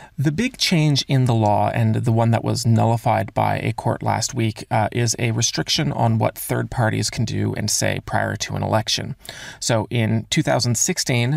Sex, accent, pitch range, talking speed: male, American, 110-125 Hz, 190 wpm